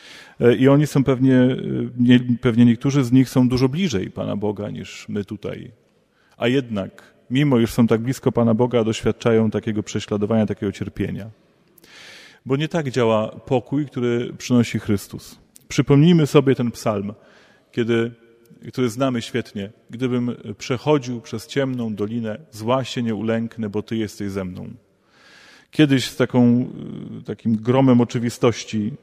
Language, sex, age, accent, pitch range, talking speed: Polish, male, 30-49, native, 115-135 Hz, 135 wpm